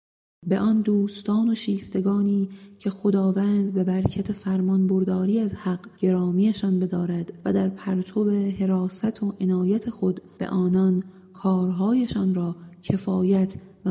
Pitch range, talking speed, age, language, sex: 185-200 Hz, 120 wpm, 30-49, English, female